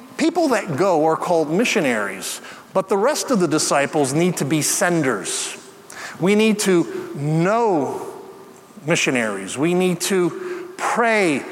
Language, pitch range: English, 170-220 Hz